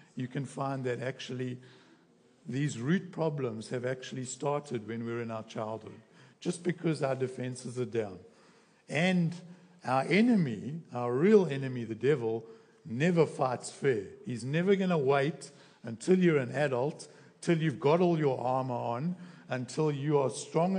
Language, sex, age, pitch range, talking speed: English, male, 60-79, 125-170 Hz, 155 wpm